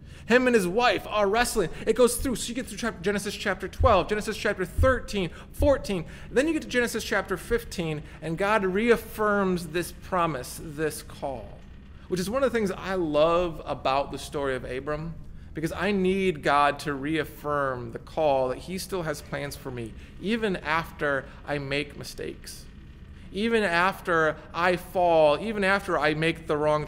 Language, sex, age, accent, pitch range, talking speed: English, male, 30-49, American, 150-195 Hz, 170 wpm